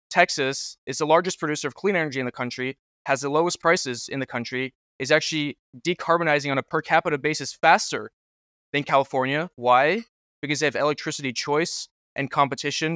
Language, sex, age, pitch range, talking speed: English, male, 20-39, 125-150 Hz, 170 wpm